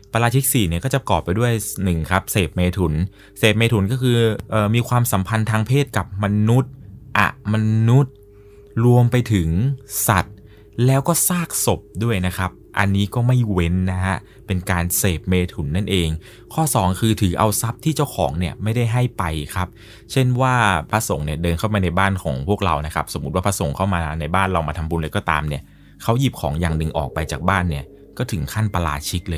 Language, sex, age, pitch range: Thai, male, 20-39, 90-115 Hz